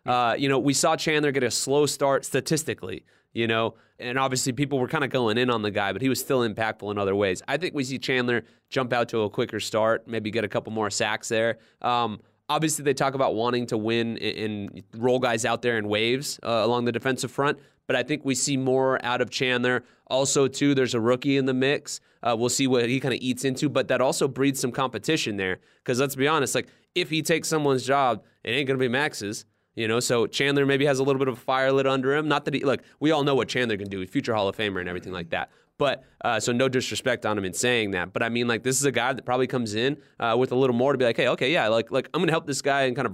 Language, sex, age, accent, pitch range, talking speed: English, male, 20-39, American, 115-135 Hz, 275 wpm